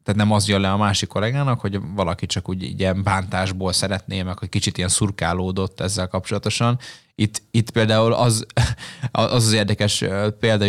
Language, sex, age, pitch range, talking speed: Hungarian, male, 20-39, 95-115 Hz, 165 wpm